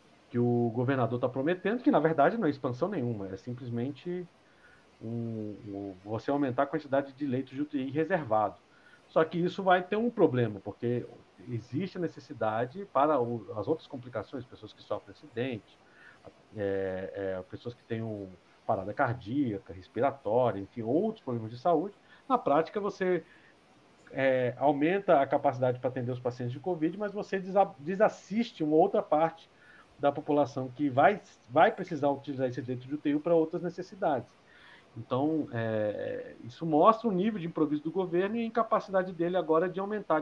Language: Portuguese